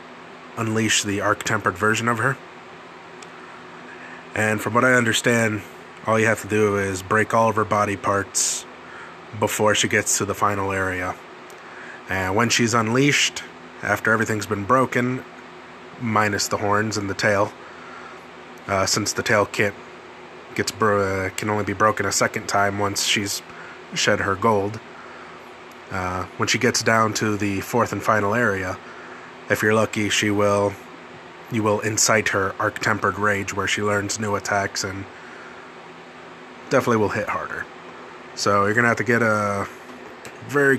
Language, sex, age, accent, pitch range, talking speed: English, male, 20-39, American, 100-115 Hz, 150 wpm